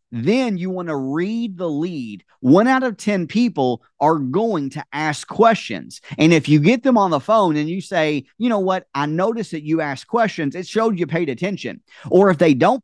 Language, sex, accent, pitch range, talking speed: English, male, American, 145-195 Hz, 215 wpm